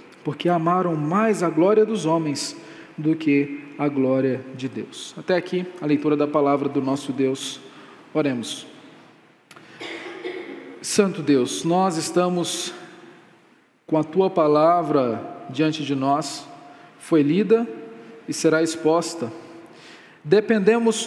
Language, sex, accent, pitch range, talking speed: Portuguese, male, Brazilian, 155-215 Hz, 115 wpm